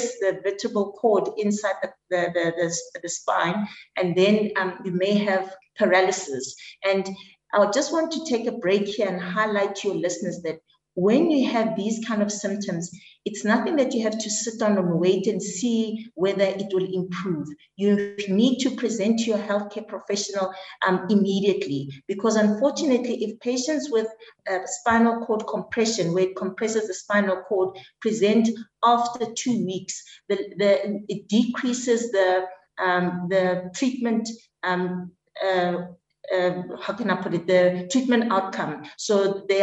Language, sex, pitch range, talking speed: English, female, 185-225 Hz, 160 wpm